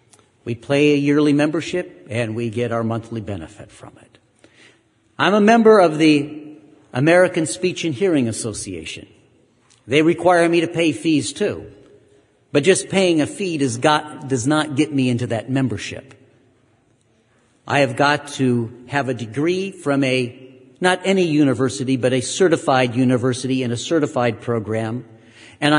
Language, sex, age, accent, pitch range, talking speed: English, male, 50-69, American, 115-150 Hz, 145 wpm